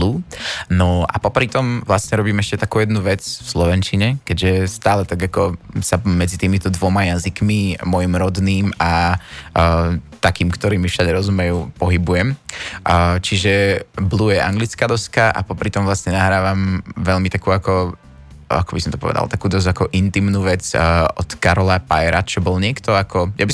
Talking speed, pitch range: 160 wpm, 85-100 Hz